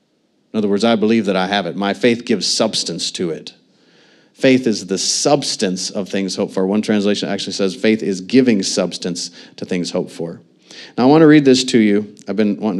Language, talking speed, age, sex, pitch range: English, 215 wpm, 40-59, male, 95-130 Hz